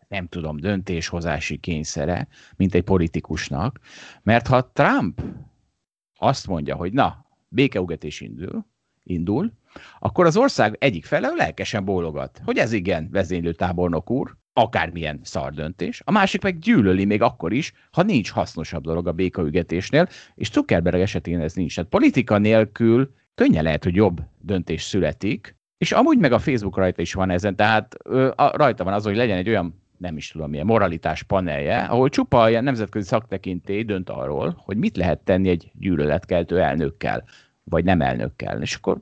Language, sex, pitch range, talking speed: Hungarian, male, 90-120 Hz, 155 wpm